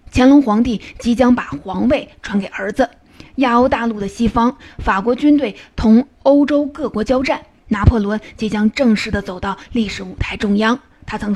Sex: female